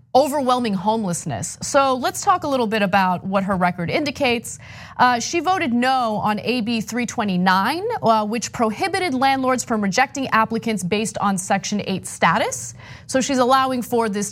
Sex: female